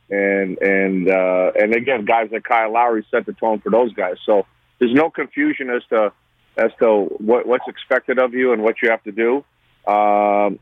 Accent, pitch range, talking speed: American, 105-125 Hz, 200 wpm